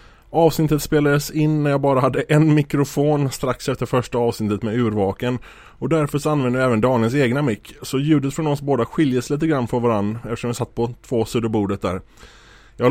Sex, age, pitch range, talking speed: male, 20-39, 115-145 Hz, 195 wpm